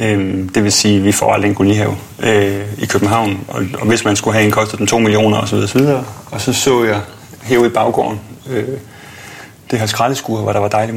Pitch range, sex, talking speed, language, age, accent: 100-115 Hz, male, 195 wpm, Danish, 30-49, native